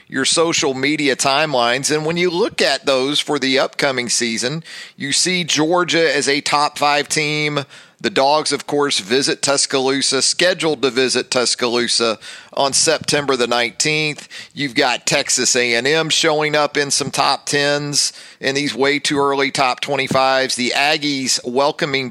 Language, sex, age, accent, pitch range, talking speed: English, male, 40-59, American, 125-150 Hz, 145 wpm